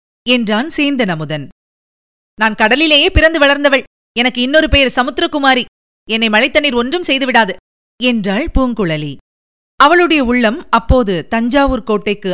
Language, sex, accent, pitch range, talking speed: Tamil, female, native, 205-285 Hz, 100 wpm